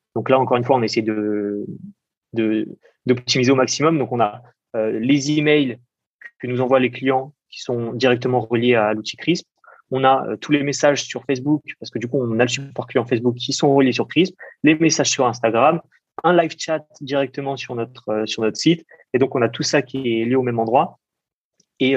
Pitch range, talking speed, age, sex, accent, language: 115-135 Hz, 220 wpm, 20-39, male, French, French